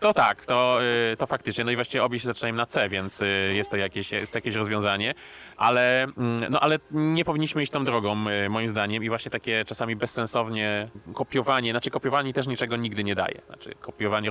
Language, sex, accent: Polish, male, native